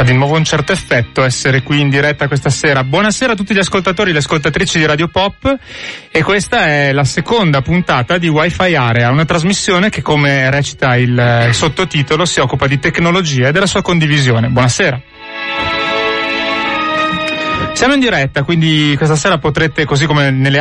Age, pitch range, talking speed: 30-49, 130-165 Hz, 170 wpm